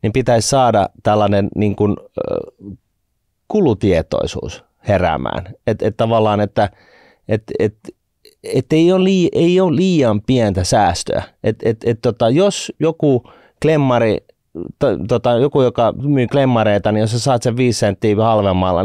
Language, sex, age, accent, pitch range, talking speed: Finnish, male, 30-49, native, 105-150 Hz, 135 wpm